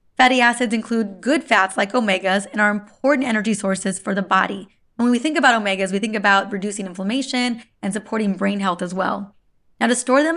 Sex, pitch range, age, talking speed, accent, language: female, 210-255 Hz, 20-39, 210 wpm, American, English